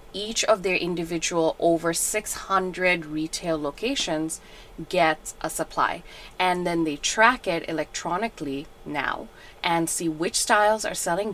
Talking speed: 125 wpm